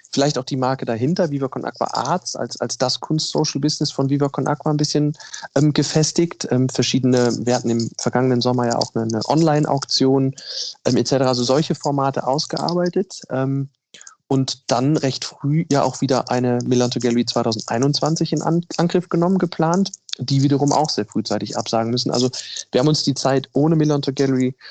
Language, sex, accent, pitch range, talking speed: German, male, German, 120-140 Hz, 175 wpm